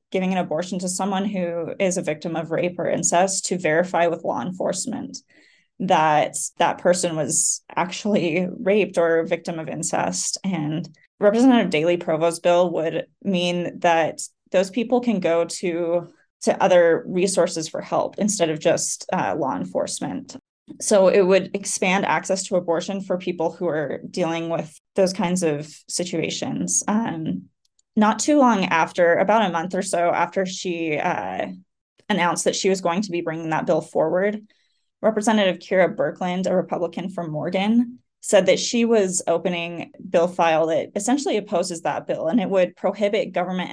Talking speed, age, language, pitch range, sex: 165 wpm, 20-39, English, 170-200 Hz, female